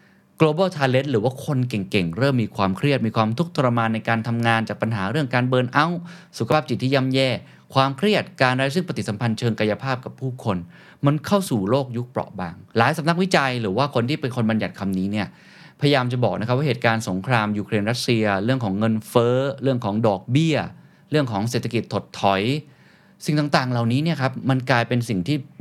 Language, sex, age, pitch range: Thai, male, 20-39, 100-135 Hz